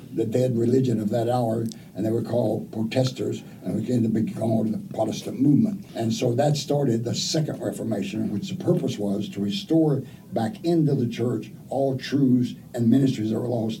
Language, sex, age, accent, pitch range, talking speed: English, male, 60-79, American, 115-140 Hz, 195 wpm